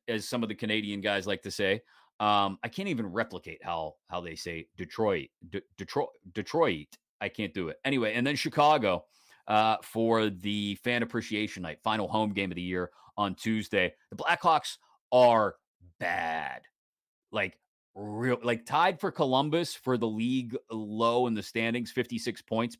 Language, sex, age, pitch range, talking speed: English, male, 30-49, 105-130 Hz, 165 wpm